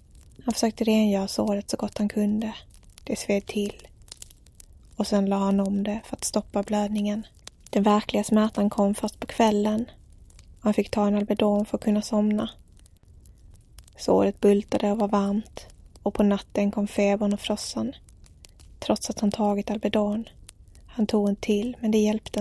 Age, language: 20-39, English